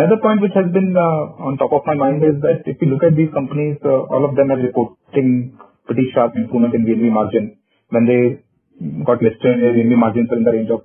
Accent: Indian